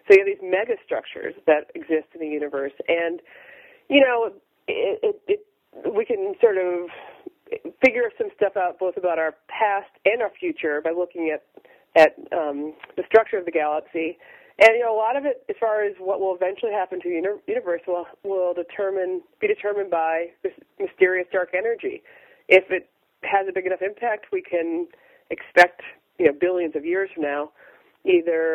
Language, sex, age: English, female, 40-59